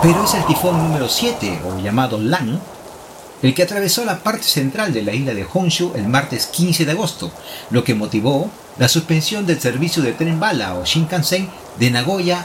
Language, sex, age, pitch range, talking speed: Spanish, male, 40-59, 120-175 Hz, 190 wpm